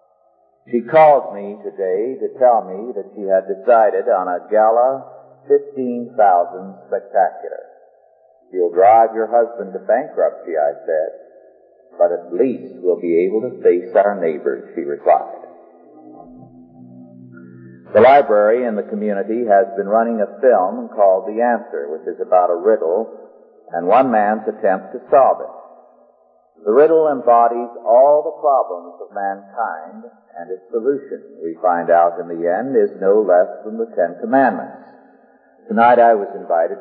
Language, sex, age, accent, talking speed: English, male, 50-69, American, 145 wpm